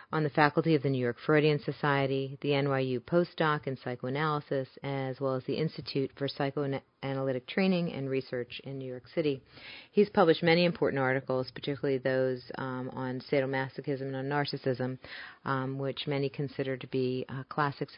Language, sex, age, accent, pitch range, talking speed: English, female, 40-59, American, 130-150 Hz, 165 wpm